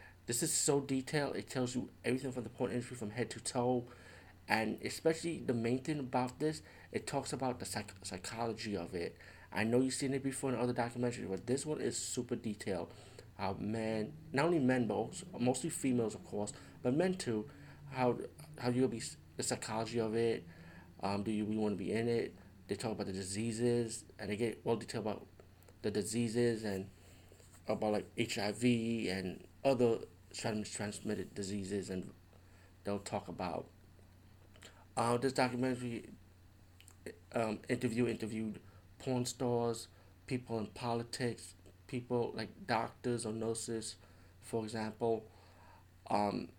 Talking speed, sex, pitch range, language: 155 wpm, male, 95-120 Hz, English